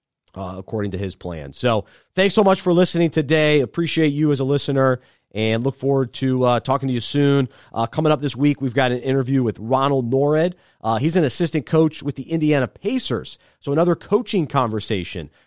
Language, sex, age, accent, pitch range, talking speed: English, male, 30-49, American, 115-165 Hz, 200 wpm